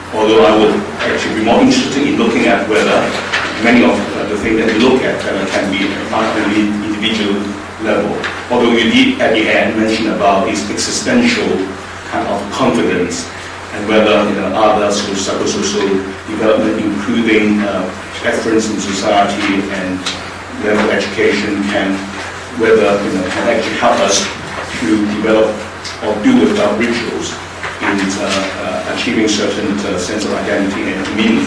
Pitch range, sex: 95-110 Hz, male